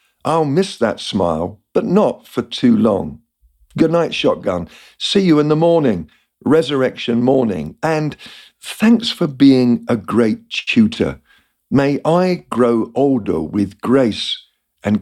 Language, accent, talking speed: English, British, 130 wpm